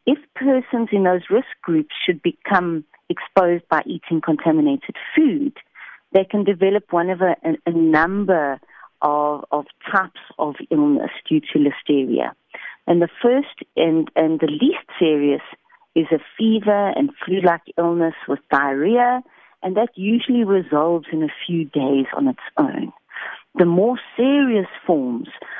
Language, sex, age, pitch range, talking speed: English, female, 40-59, 160-230 Hz, 140 wpm